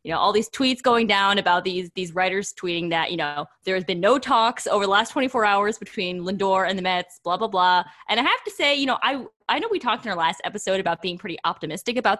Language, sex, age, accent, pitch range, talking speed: English, female, 20-39, American, 180-245 Hz, 265 wpm